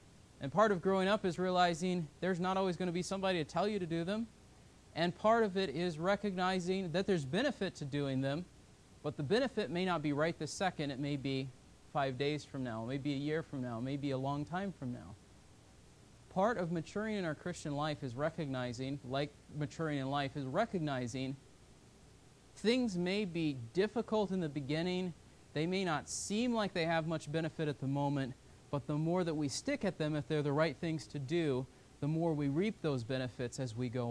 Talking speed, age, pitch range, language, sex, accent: 205 wpm, 30-49, 140-185 Hz, English, male, American